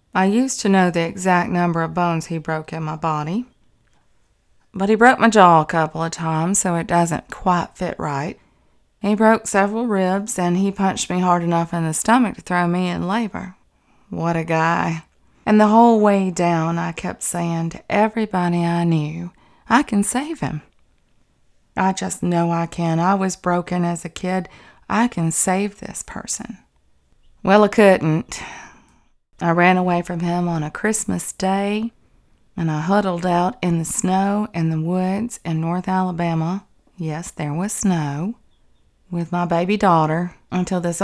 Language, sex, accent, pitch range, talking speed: English, female, American, 165-200 Hz, 170 wpm